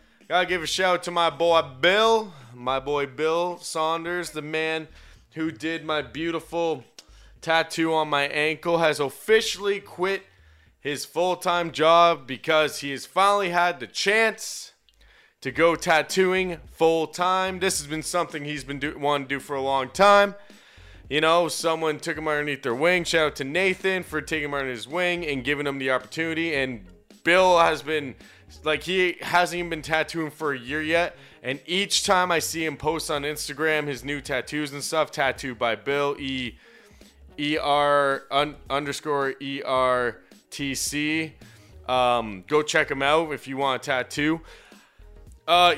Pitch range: 140-175 Hz